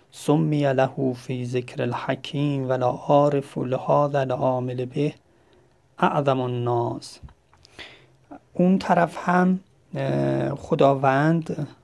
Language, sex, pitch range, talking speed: Persian, male, 125-145 Hz, 80 wpm